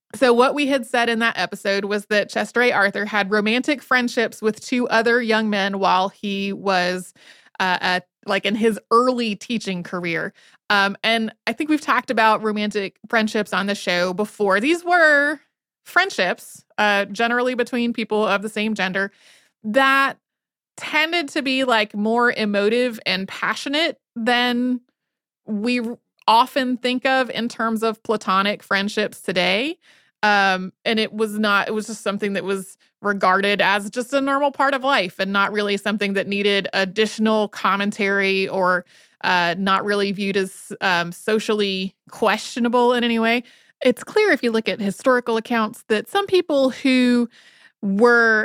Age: 20-39